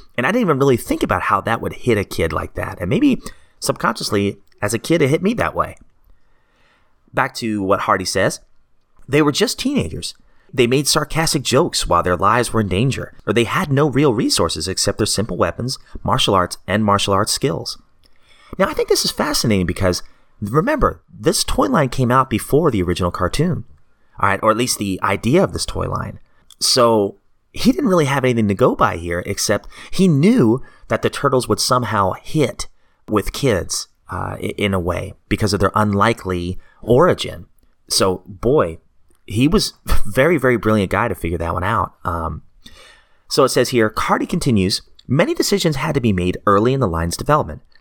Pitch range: 95-135 Hz